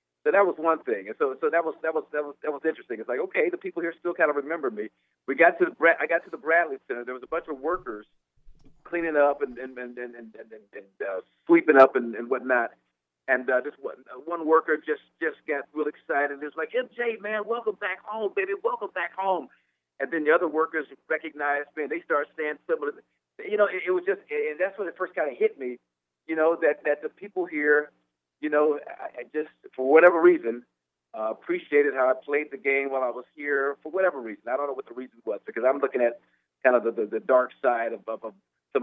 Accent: American